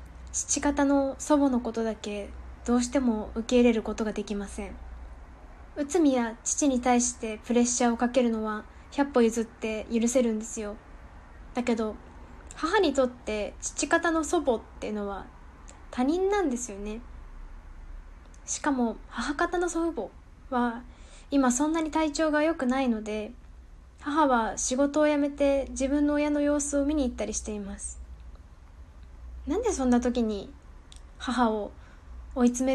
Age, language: 10-29, Japanese